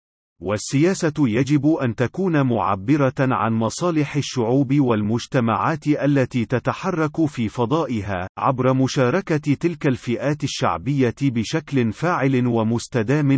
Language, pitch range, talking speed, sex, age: Arabic, 115-145 Hz, 95 wpm, male, 40-59